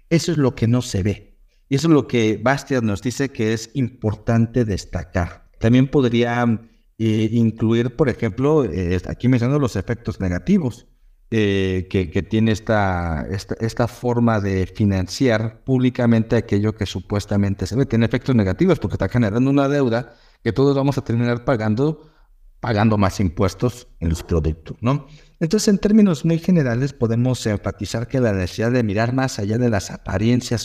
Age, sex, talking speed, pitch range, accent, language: 50-69, male, 165 wpm, 105-130 Hz, Mexican, Spanish